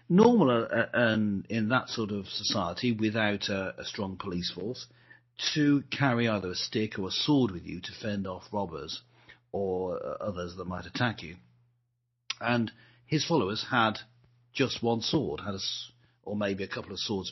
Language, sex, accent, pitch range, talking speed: English, male, British, 105-140 Hz, 165 wpm